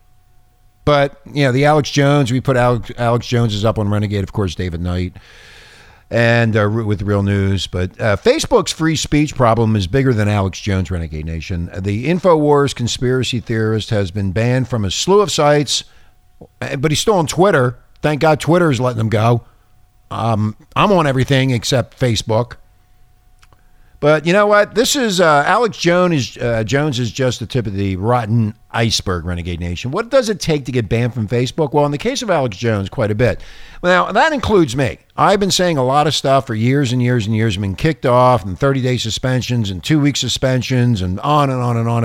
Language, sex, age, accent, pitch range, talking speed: English, male, 50-69, American, 105-145 Hz, 205 wpm